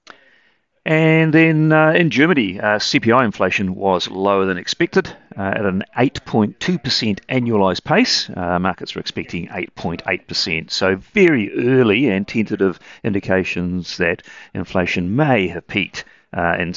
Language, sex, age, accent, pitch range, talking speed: English, male, 40-59, British, 90-115 Hz, 130 wpm